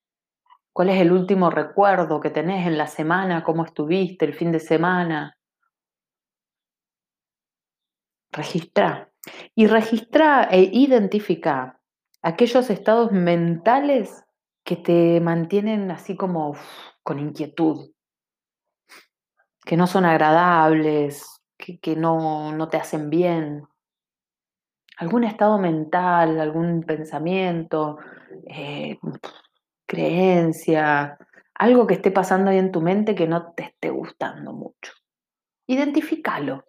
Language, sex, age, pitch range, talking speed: Spanish, female, 30-49, 155-210 Hz, 105 wpm